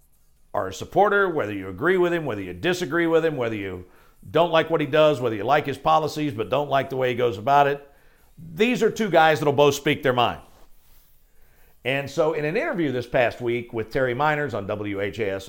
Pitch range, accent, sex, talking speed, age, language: 120-150 Hz, American, male, 220 wpm, 50-69, English